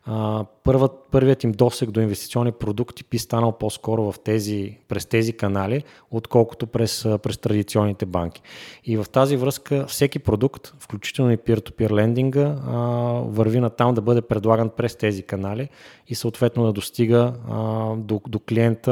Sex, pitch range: male, 100-120 Hz